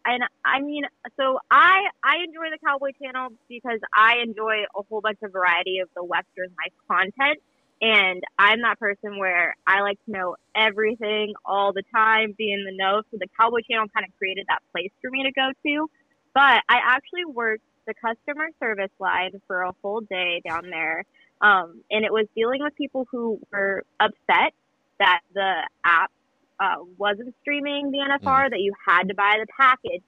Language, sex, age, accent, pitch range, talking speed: English, female, 20-39, American, 195-265 Hz, 185 wpm